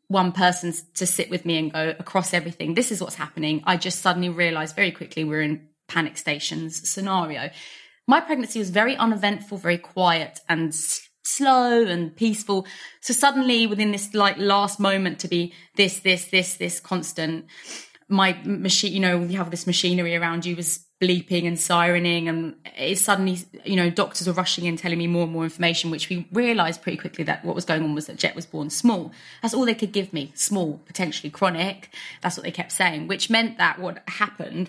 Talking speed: 195 wpm